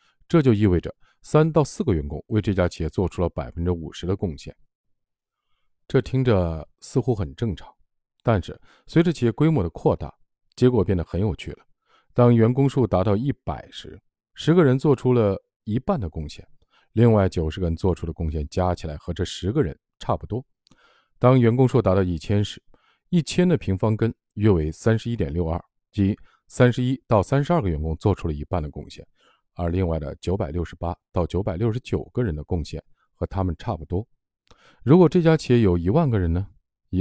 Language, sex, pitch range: Chinese, male, 85-125 Hz